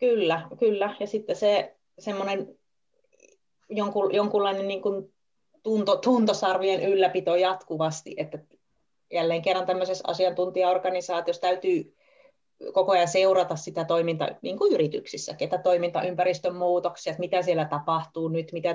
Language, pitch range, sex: Finnish, 160-190 Hz, female